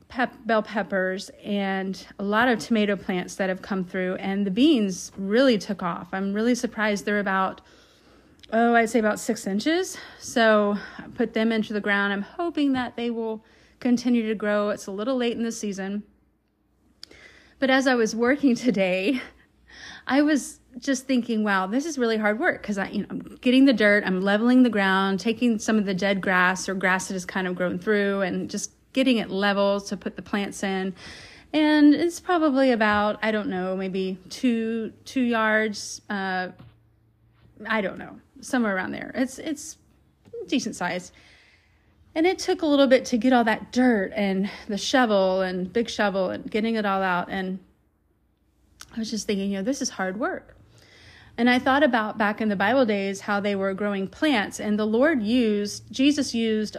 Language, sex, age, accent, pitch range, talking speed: English, female, 30-49, American, 195-245 Hz, 185 wpm